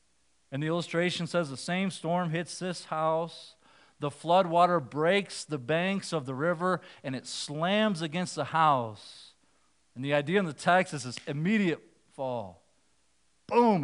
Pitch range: 135-185 Hz